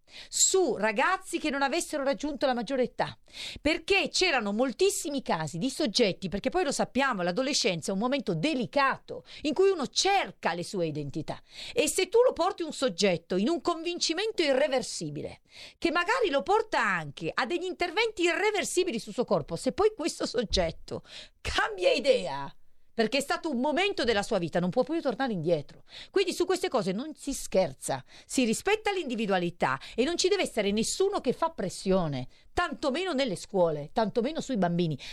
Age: 40-59